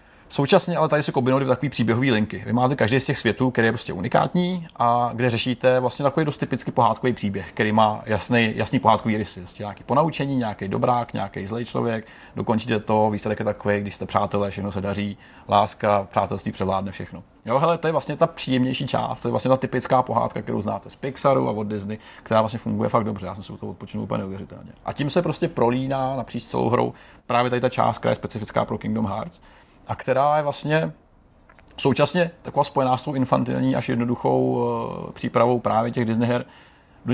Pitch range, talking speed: 105-130 Hz, 205 wpm